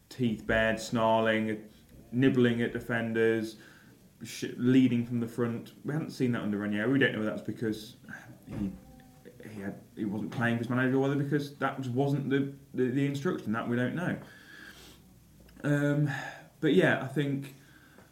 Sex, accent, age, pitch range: male, British, 20-39, 110-135 Hz